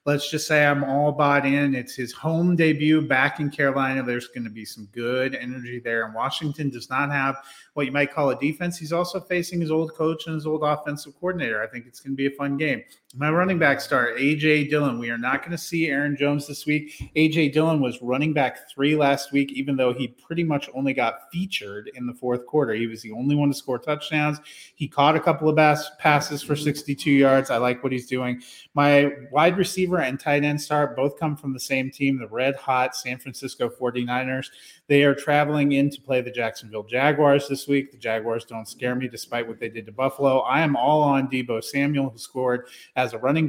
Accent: American